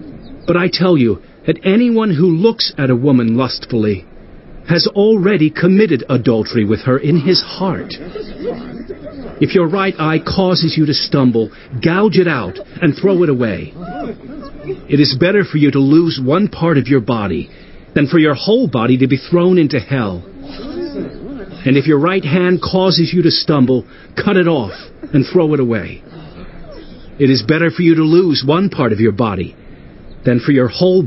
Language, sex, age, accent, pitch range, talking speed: English, male, 50-69, American, 130-180 Hz, 175 wpm